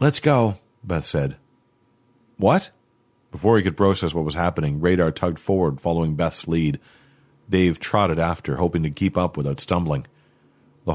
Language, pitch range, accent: English, 85-120 Hz, American